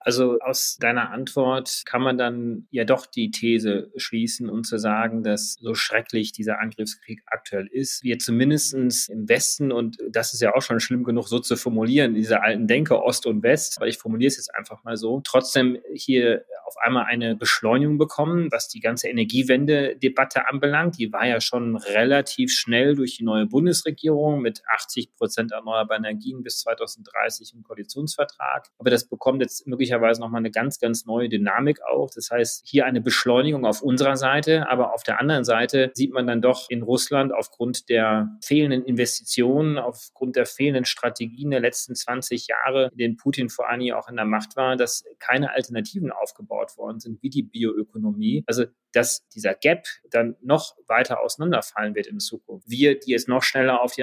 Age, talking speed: 30-49, 180 wpm